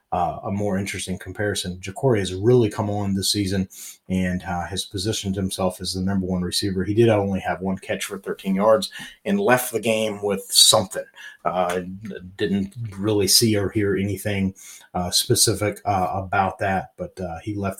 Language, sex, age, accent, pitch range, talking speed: English, male, 30-49, American, 95-110 Hz, 180 wpm